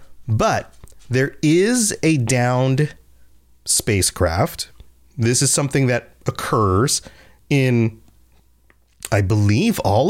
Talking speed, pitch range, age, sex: 90 wpm, 110-160 Hz, 30-49, male